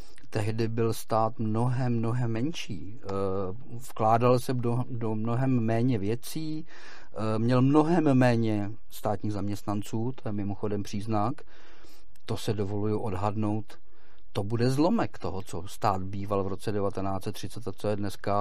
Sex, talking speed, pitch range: male, 130 wpm, 110-140 Hz